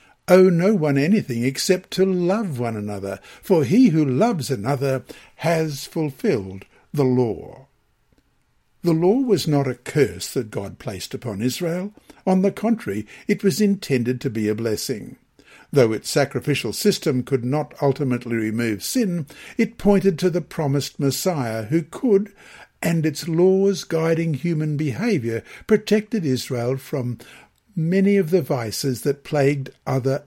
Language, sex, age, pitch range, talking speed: English, male, 60-79, 125-185 Hz, 145 wpm